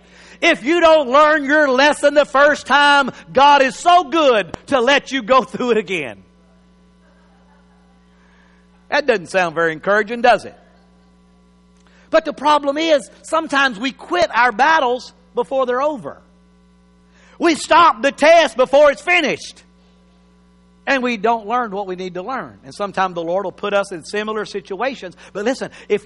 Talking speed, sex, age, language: 155 wpm, male, 50-69, English